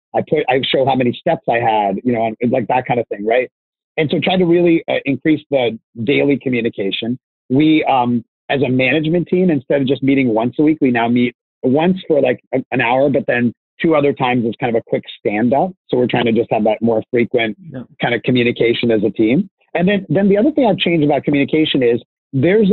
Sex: male